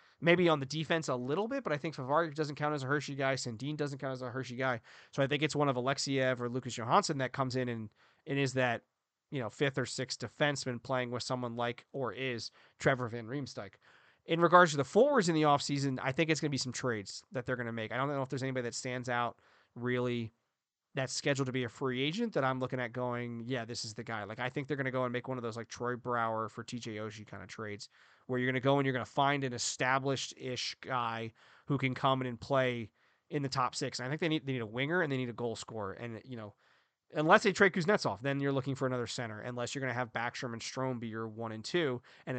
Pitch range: 120-145 Hz